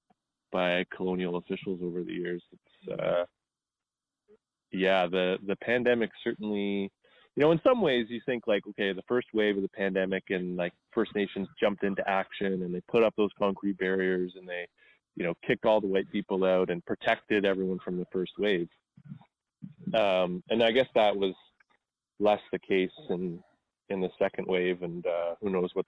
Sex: male